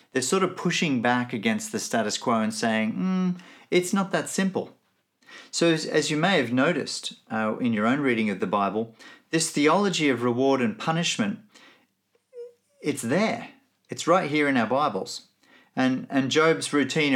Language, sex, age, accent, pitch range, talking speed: English, male, 40-59, Australian, 120-185 Hz, 170 wpm